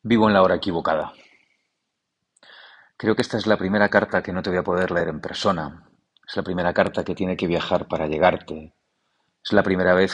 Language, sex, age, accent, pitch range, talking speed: Spanish, male, 40-59, Spanish, 90-110 Hz, 205 wpm